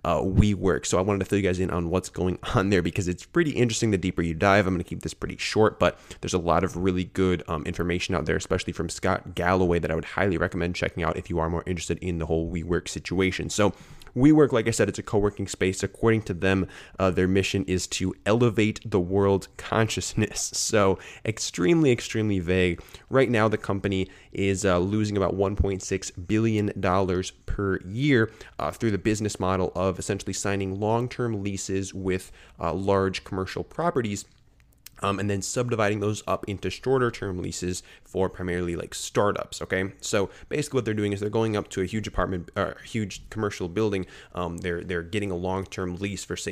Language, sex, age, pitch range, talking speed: English, male, 20-39, 90-110 Hz, 200 wpm